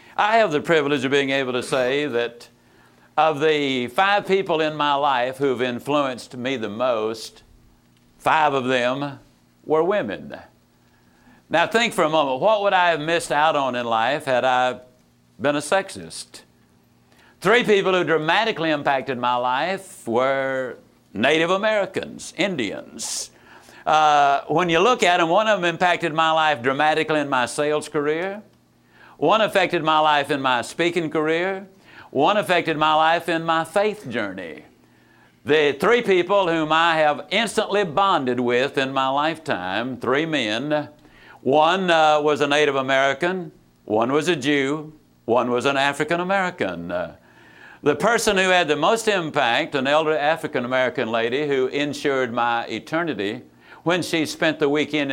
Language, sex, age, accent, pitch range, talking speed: English, male, 60-79, American, 135-170 Hz, 150 wpm